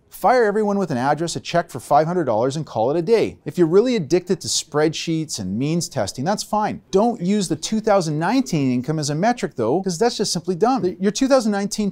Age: 40-59